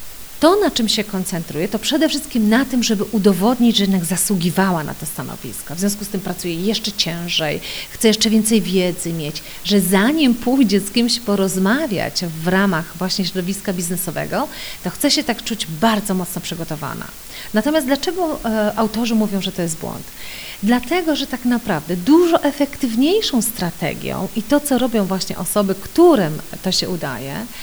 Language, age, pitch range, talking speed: Polish, 40-59, 185-245 Hz, 160 wpm